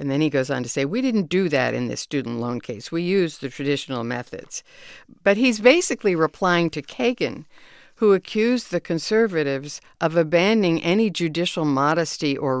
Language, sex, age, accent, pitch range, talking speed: English, female, 60-79, American, 155-225 Hz, 175 wpm